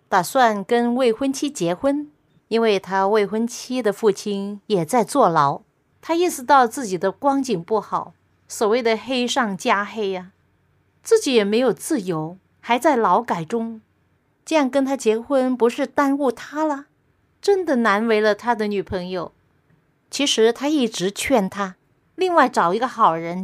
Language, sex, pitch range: Chinese, female, 200-275 Hz